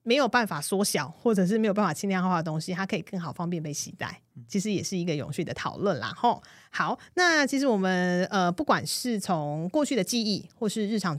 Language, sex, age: Chinese, female, 30-49